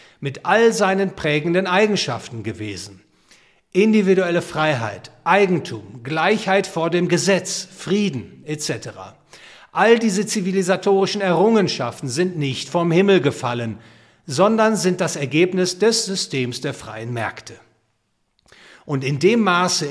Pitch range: 135-190 Hz